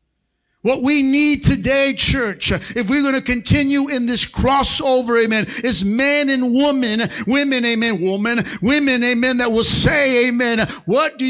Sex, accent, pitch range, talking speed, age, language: male, American, 185-270 Hz, 155 wpm, 50-69, English